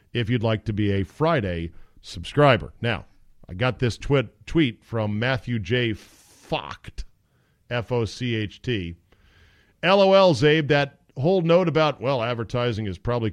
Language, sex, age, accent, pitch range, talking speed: English, male, 50-69, American, 100-155 Hz, 130 wpm